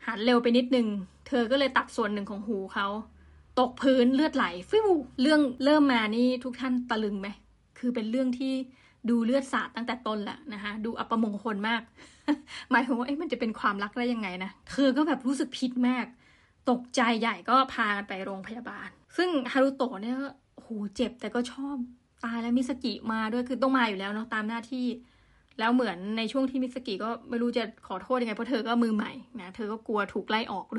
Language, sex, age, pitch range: Thai, female, 20-39, 220-260 Hz